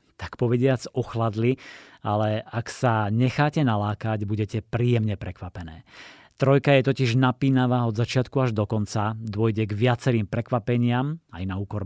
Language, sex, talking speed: Slovak, male, 135 wpm